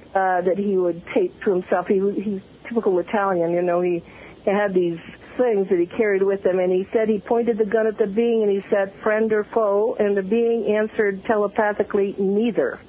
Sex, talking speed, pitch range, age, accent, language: female, 215 wpm, 185-225 Hz, 50-69, American, English